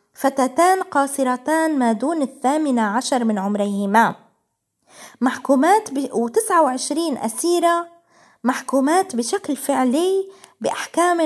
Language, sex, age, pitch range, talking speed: Arabic, female, 20-39, 235-320 Hz, 80 wpm